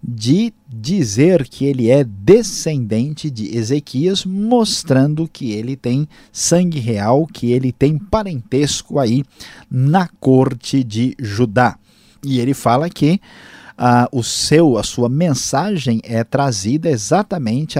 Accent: Brazilian